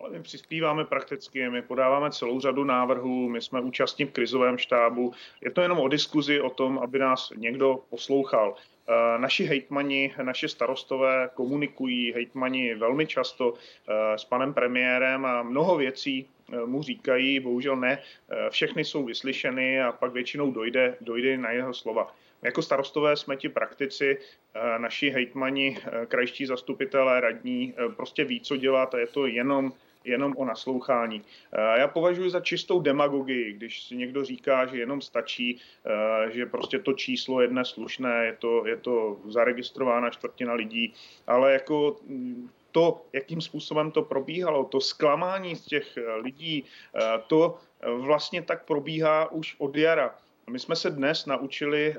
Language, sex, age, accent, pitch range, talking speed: Czech, male, 30-49, native, 125-145 Hz, 145 wpm